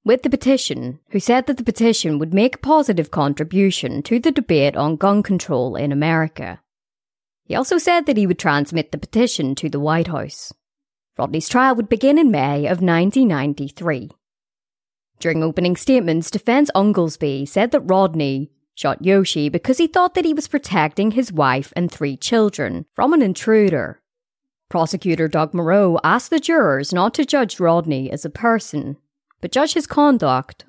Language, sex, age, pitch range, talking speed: English, female, 30-49, 155-245 Hz, 165 wpm